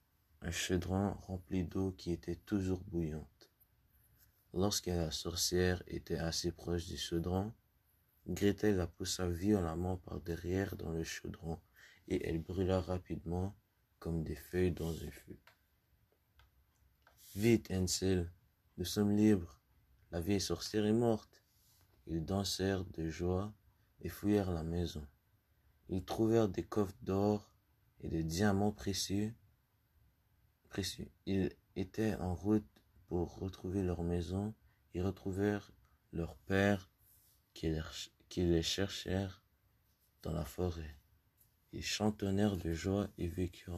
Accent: French